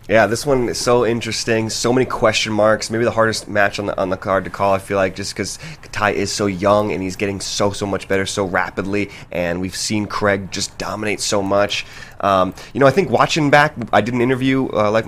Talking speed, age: 240 wpm, 20-39